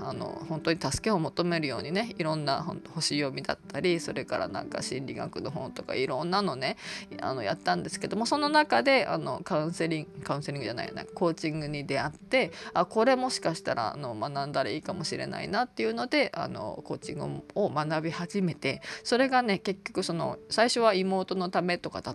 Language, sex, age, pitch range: Japanese, female, 20-39, 155-215 Hz